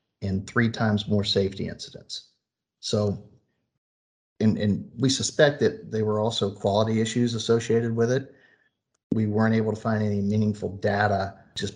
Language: English